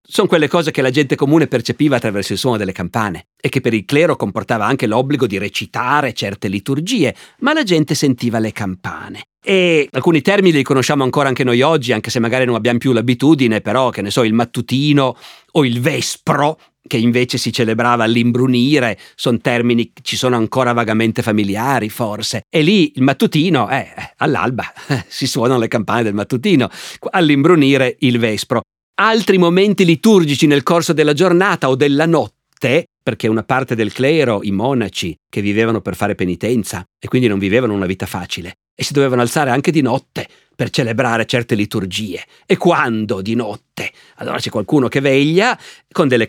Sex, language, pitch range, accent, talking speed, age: male, Italian, 110-145 Hz, native, 175 wpm, 50-69